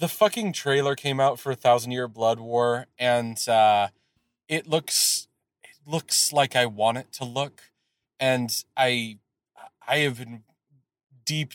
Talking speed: 150 wpm